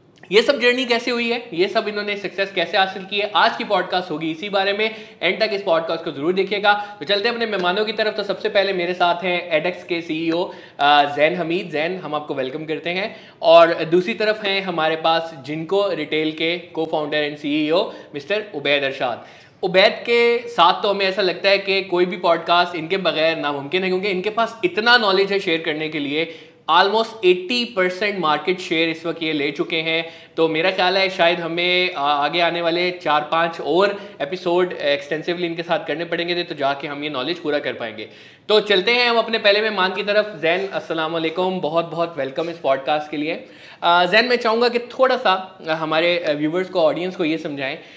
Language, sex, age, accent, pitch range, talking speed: Hindi, male, 20-39, native, 160-200 Hz, 200 wpm